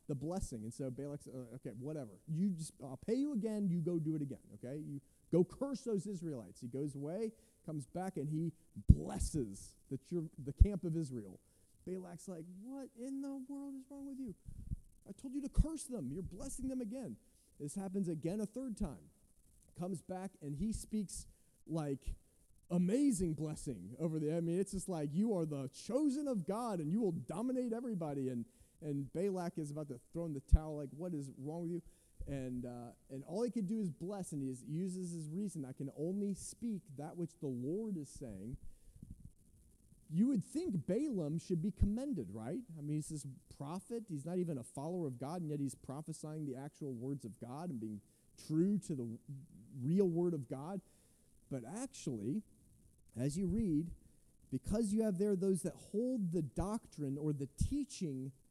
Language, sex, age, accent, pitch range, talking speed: English, male, 30-49, American, 140-200 Hz, 195 wpm